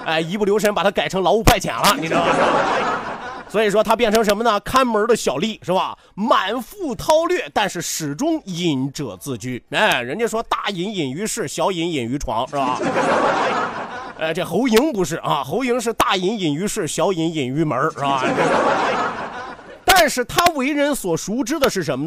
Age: 30-49